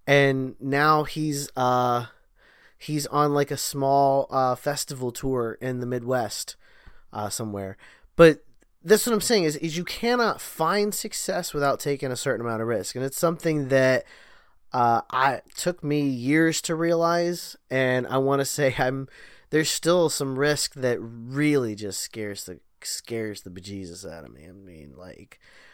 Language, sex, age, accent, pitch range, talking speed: English, male, 20-39, American, 125-160 Hz, 165 wpm